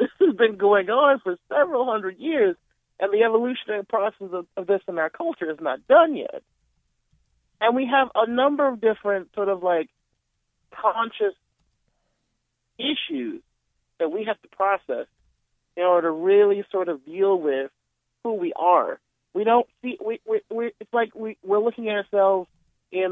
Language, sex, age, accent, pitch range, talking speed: English, male, 40-59, American, 170-250 Hz, 170 wpm